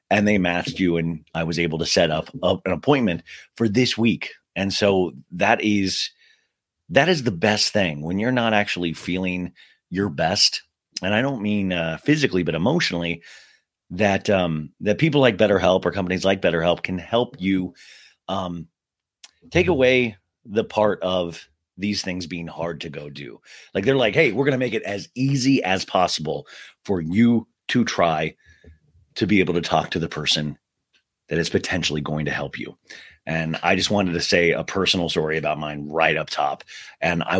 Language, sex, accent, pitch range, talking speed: English, male, American, 85-110 Hz, 185 wpm